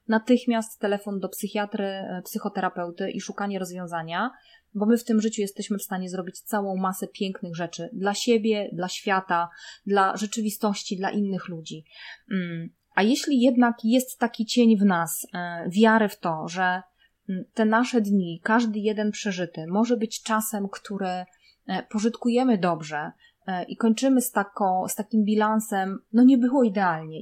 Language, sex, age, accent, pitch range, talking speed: Polish, female, 20-39, native, 195-235 Hz, 145 wpm